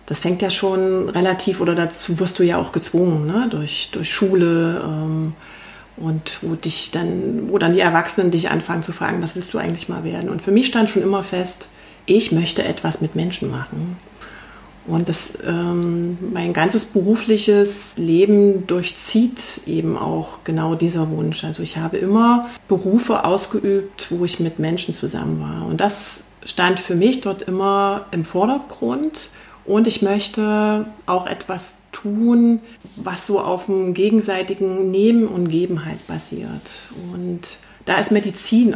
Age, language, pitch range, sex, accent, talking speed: 30-49, German, 170-205 Hz, female, German, 155 wpm